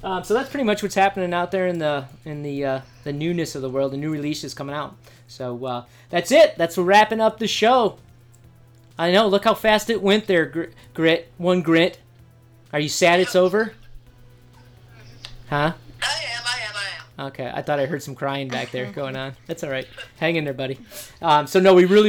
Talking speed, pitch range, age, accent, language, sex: 220 wpm, 135-180 Hz, 30-49, American, English, male